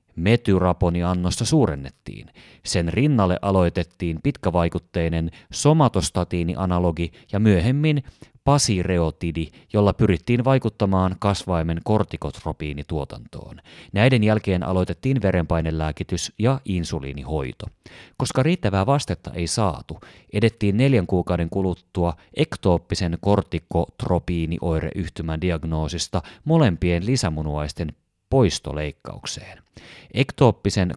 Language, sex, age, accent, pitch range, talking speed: Finnish, male, 30-49, native, 85-110 Hz, 70 wpm